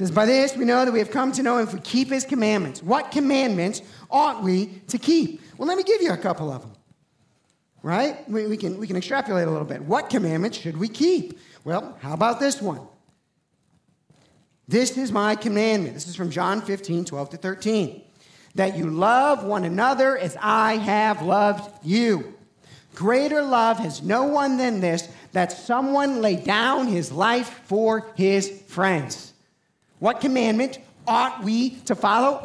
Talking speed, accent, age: 175 wpm, American, 50-69